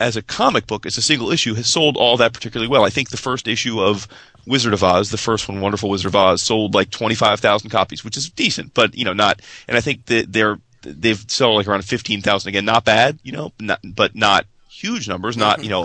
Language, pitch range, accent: English, 105-130 Hz, American